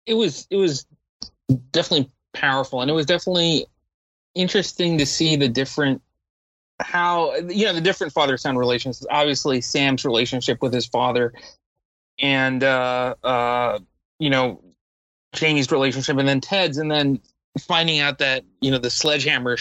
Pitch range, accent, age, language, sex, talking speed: 125-165 Hz, American, 30-49, English, male, 145 wpm